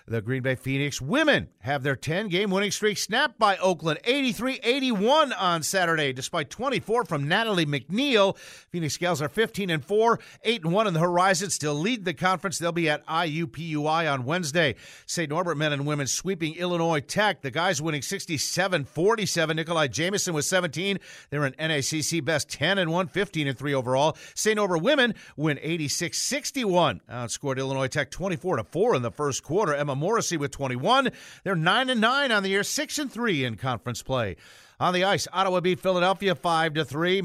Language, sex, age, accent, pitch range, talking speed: English, male, 50-69, American, 150-205 Hz, 175 wpm